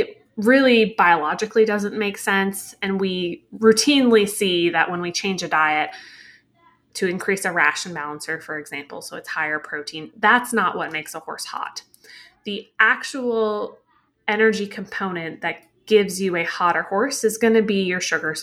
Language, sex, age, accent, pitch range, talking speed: English, female, 20-39, American, 170-220 Hz, 160 wpm